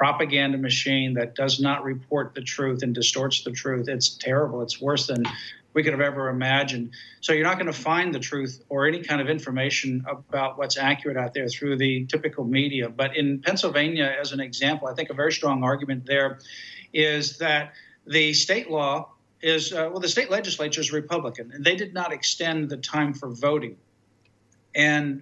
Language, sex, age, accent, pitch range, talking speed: English, male, 50-69, American, 135-160 Hz, 190 wpm